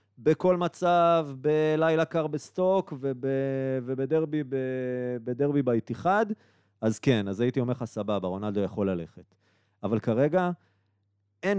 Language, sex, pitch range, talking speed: Hebrew, male, 100-145 Hz, 125 wpm